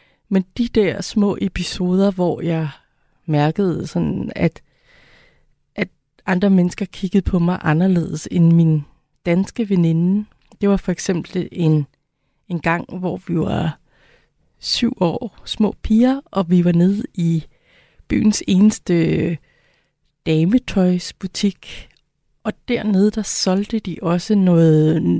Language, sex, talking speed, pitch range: Danish, female, 120 wpm, 160-200 Hz